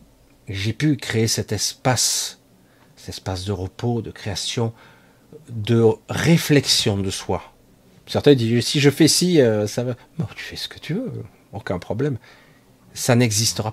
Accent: French